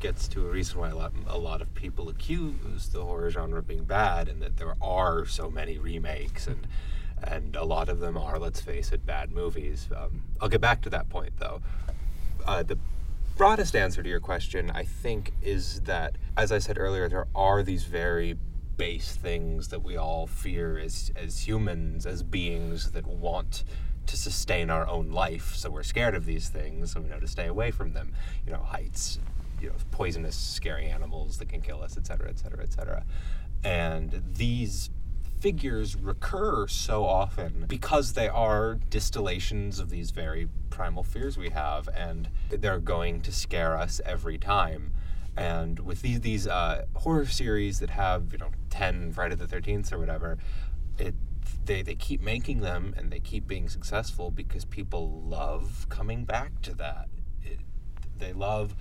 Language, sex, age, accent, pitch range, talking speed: English, male, 30-49, American, 80-95 Hz, 180 wpm